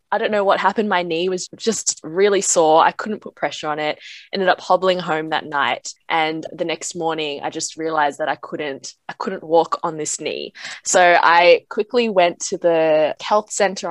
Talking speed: 205 wpm